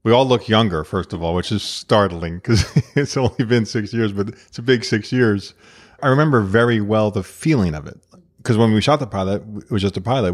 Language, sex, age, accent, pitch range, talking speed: English, male, 30-49, American, 95-110 Hz, 240 wpm